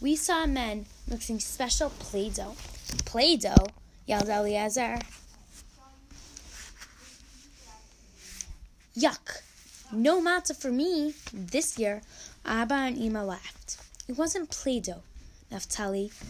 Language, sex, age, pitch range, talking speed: English, female, 10-29, 210-260 Hz, 90 wpm